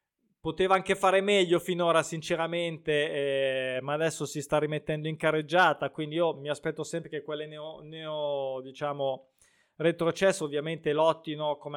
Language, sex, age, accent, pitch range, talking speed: Italian, male, 20-39, native, 145-195 Hz, 145 wpm